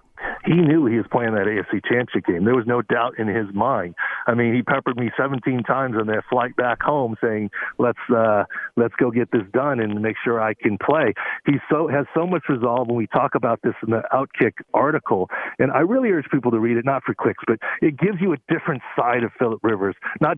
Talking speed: 235 wpm